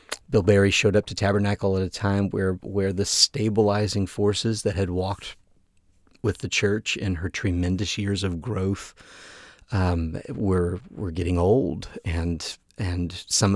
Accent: American